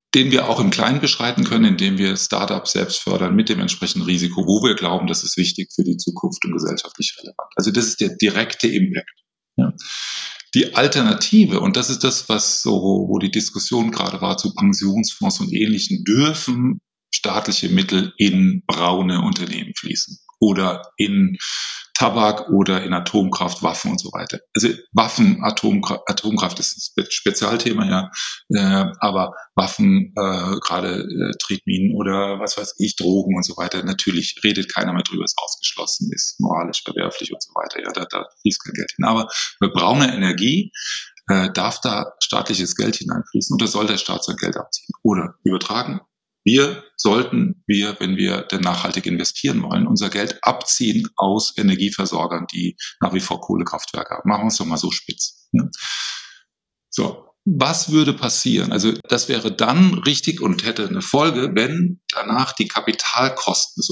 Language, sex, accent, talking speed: German, male, German, 165 wpm